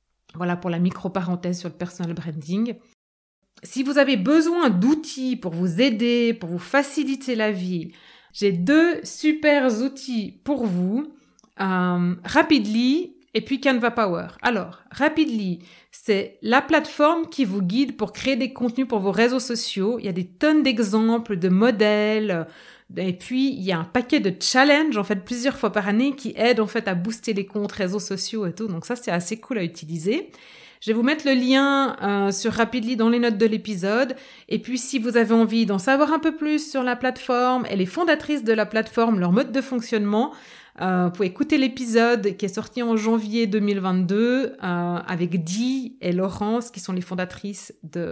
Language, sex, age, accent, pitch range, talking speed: French, female, 30-49, French, 195-265 Hz, 185 wpm